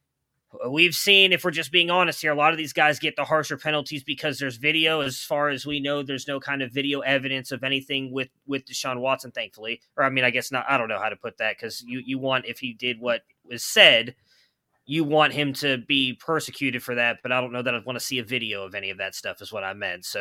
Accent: American